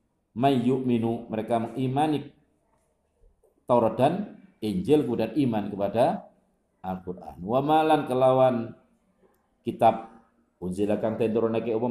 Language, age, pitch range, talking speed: Indonesian, 50-69, 115-130 Hz, 75 wpm